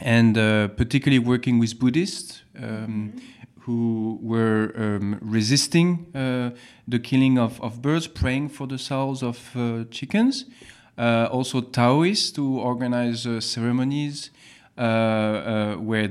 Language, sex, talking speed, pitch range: English, male, 125 wpm, 115-135 Hz